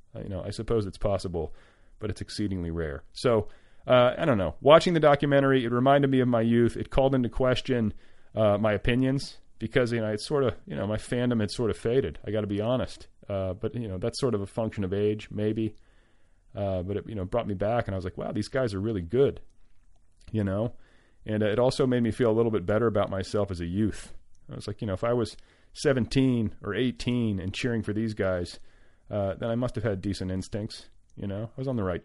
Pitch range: 100-120 Hz